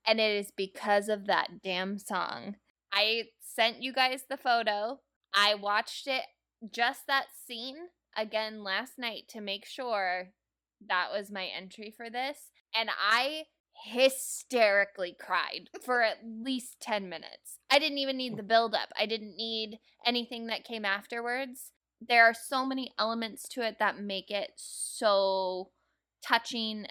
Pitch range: 195-235 Hz